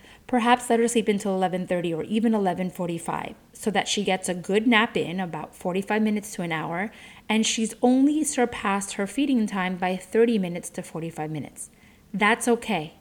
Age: 30-49